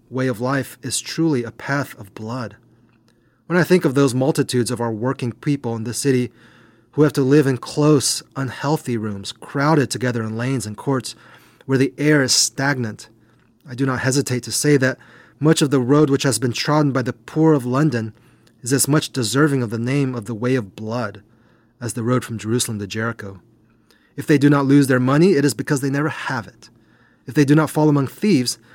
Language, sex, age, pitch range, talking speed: English, male, 30-49, 115-145 Hz, 210 wpm